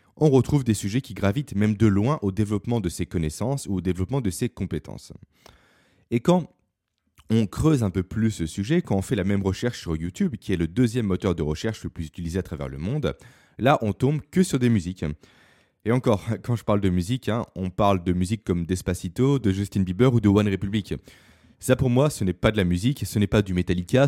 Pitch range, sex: 95-125 Hz, male